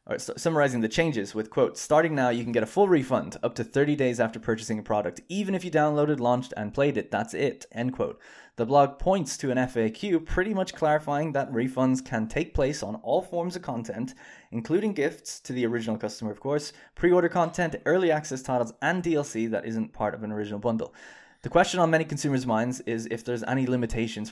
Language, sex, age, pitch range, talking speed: English, male, 20-39, 115-145 Hz, 210 wpm